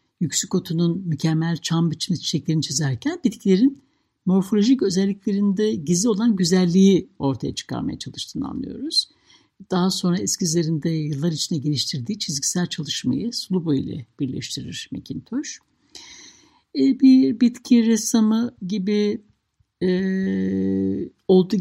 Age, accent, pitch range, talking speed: 60-79, native, 160-220 Hz, 95 wpm